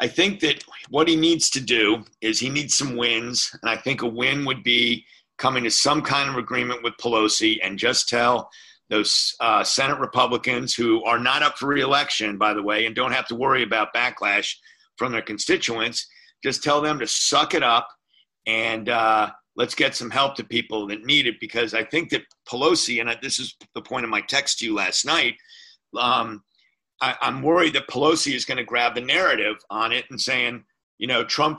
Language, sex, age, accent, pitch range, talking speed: English, male, 50-69, American, 115-145 Hz, 205 wpm